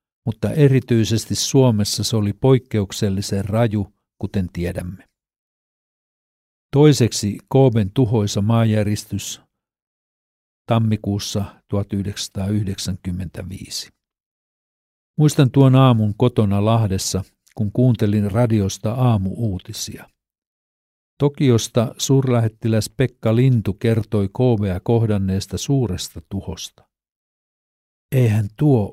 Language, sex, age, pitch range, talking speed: Finnish, male, 50-69, 100-120 Hz, 75 wpm